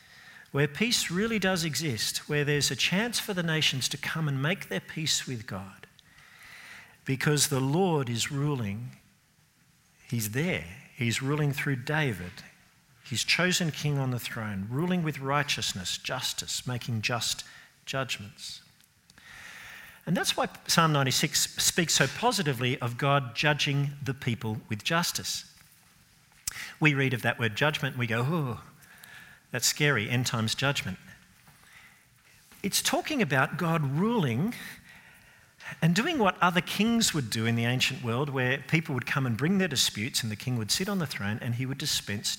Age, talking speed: 50-69, 155 wpm